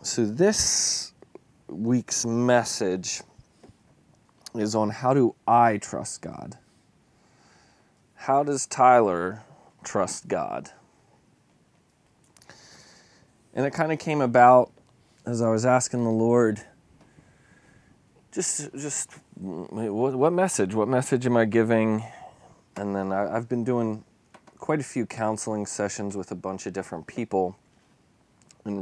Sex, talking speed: male, 115 wpm